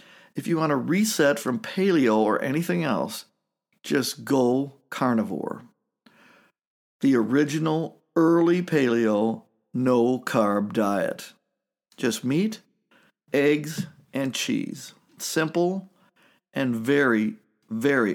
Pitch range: 125-175 Hz